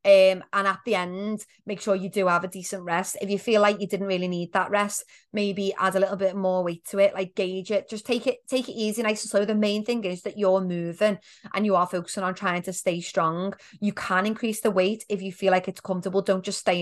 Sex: female